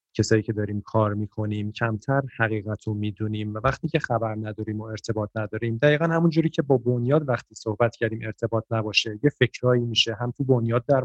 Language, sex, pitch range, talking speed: Persian, male, 115-145 Hz, 185 wpm